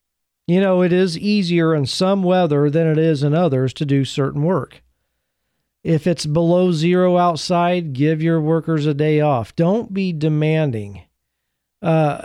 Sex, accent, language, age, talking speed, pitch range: male, American, English, 40-59, 155 wpm, 130-175 Hz